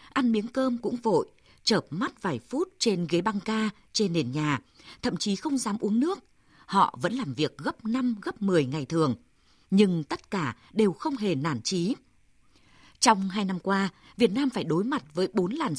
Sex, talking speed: female, 200 wpm